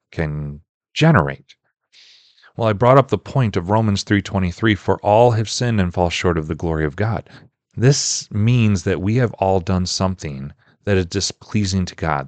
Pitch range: 95-120 Hz